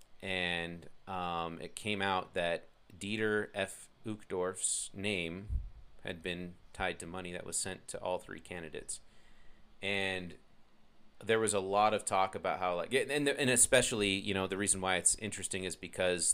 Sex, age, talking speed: male, 30-49, 160 wpm